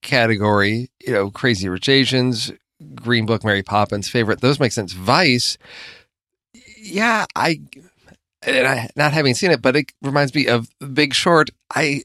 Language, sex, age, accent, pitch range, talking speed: English, male, 40-59, American, 115-150 Hz, 155 wpm